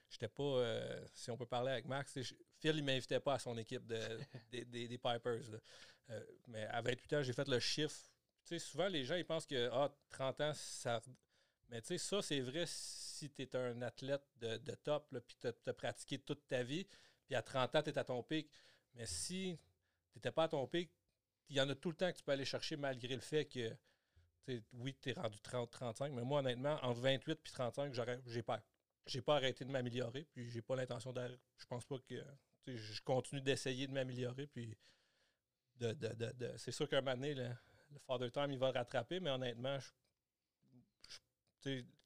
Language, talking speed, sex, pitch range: French, 225 wpm, male, 120-145 Hz